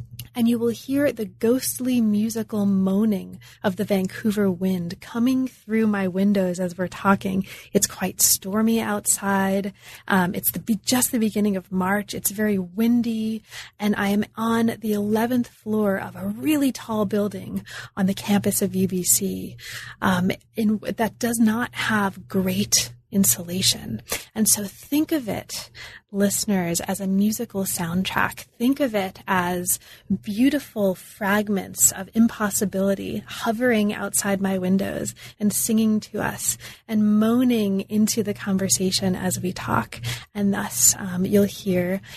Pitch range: 190-225 Hz